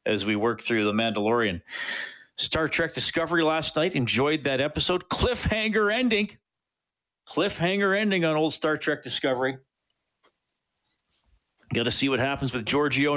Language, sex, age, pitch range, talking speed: English, male, 50-69, 135-170 Hz, 135 wpm